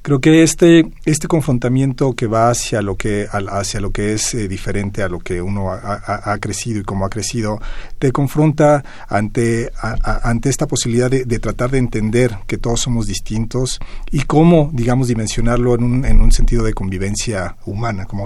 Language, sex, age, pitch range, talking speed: Spanish, male, 40-59, 105-125 Hz, 190 wpm